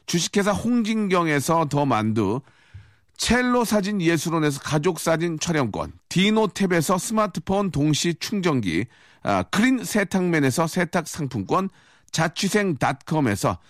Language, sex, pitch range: Korean, male, 155-205 Hz